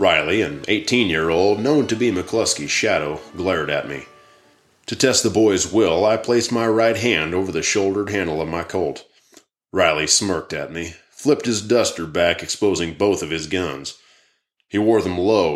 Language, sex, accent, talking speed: English, male, American, 175 wpm